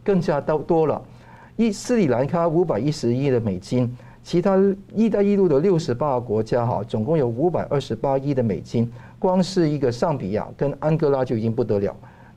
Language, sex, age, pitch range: Chinese, male, 50-69, 115-160 Hz